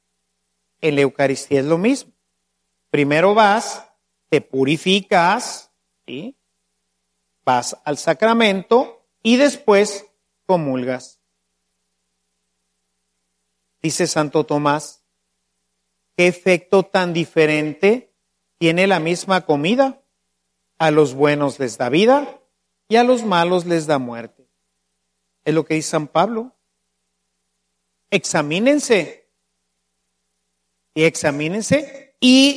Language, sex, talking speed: Spanish, male, 90 wpm